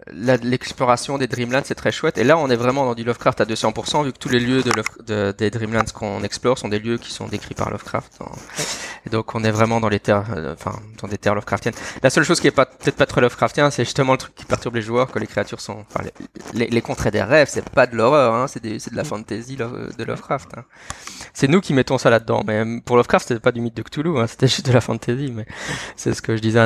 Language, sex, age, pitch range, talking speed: English, male, 20-39, 110-130 Hz, 270 wpm